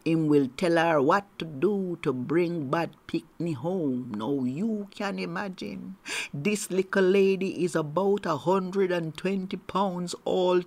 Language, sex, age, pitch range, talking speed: English, male, 50-69, 185-235 Hz, 150 wpm